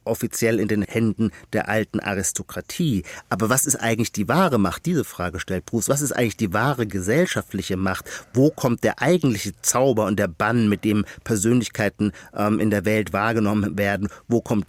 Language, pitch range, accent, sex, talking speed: German, 115-170 Hz, German, male, 180 wpm